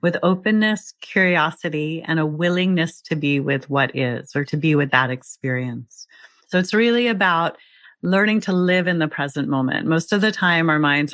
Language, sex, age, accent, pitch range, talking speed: English, female, 30-49, American, 140-170 Hz, 185 wpm